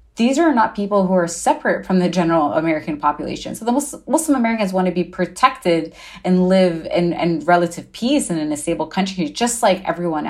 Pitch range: 165-205 Hz